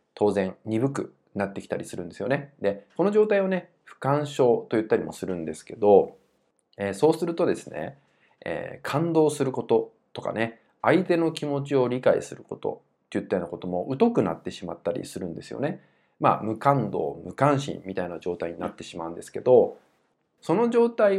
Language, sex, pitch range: Japanese, male, 95-160 Hz